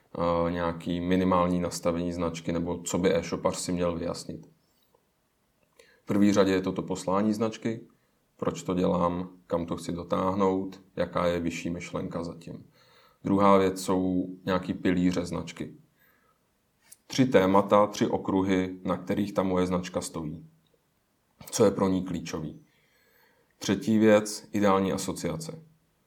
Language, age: Czech, 30-49